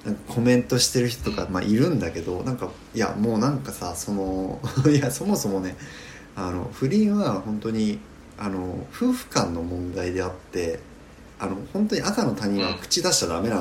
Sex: male